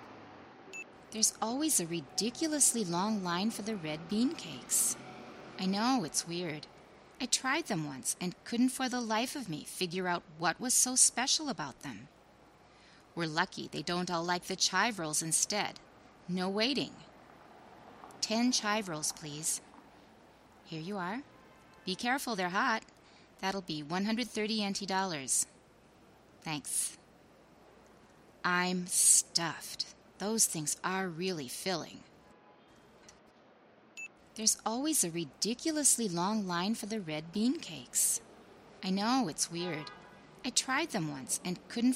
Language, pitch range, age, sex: Chinese, 175-230 Hz, 20-39, female